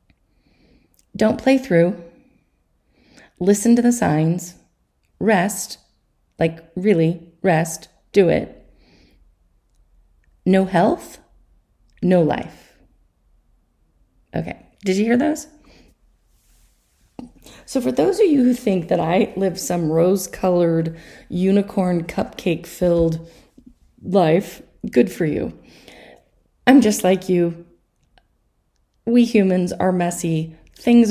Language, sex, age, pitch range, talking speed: English, female, 30-49, 170-220 Hz, 100 wpm